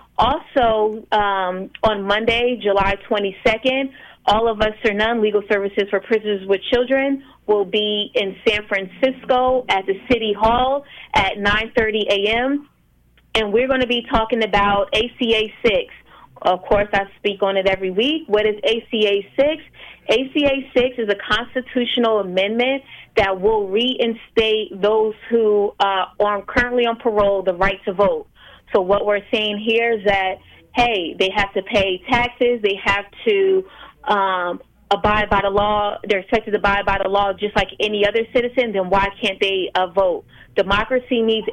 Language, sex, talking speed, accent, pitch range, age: English, female, 160 wpm, American, 200-240 Hz, 30-49